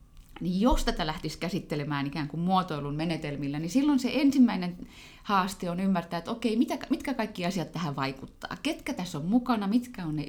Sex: female